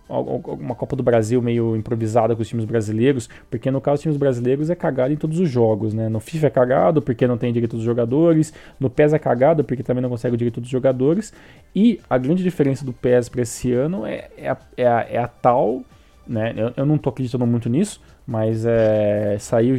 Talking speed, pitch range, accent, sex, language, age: 220 wpm, 115-145 Hz, Brazilian, male, Portuguese, 20-39